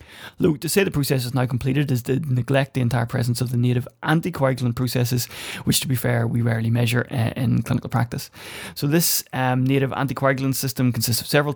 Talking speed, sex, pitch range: 205 wpm, male, 120-140 Hz